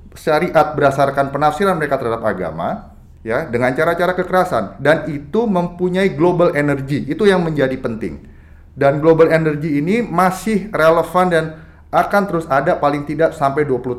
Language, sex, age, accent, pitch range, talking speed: Indonesian, male, 30-49, native, 125-165 Hz, 140 wpm